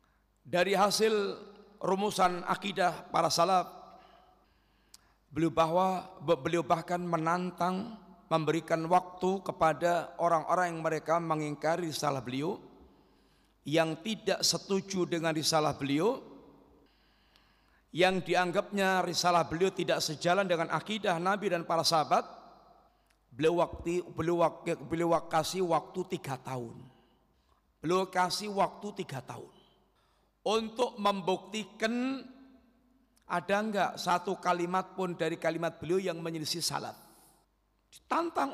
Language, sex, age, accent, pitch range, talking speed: Indonesian, male, 50-69, native, 165-195 Hz, 100 wpm